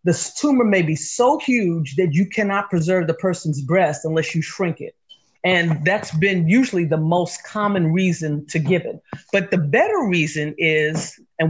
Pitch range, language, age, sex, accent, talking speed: 170-220 Hz, English, 40-59, female, American, 175 wpm